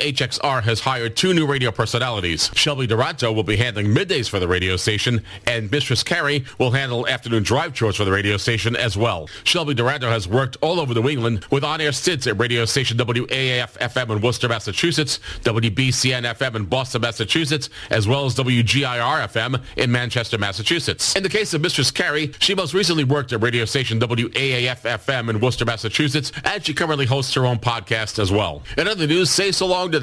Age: 40-59